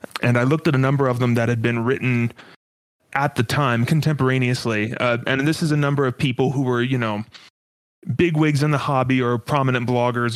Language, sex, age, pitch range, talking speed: English, male, 30-49, 120-150 Hz, 210 wpm